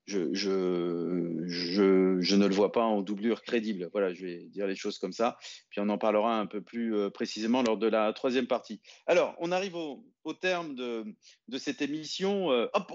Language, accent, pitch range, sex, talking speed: French, French, 115-170 Hz, male, 200 wpm